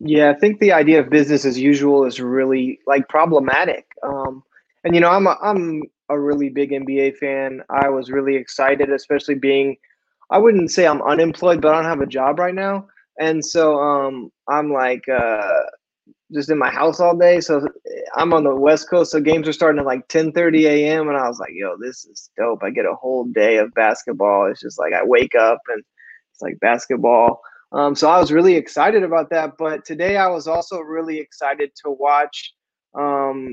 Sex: male